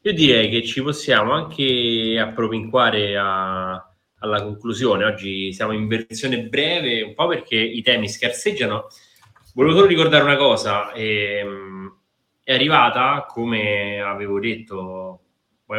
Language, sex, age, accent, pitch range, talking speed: Italian, male, 20-39, native, 100-125 Hz, 125 wpm